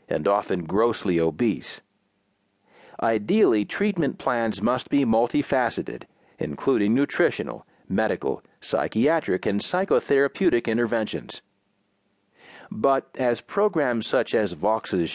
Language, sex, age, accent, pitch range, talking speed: English, male, 40-59, American, 100-140 Hz, 90 wpm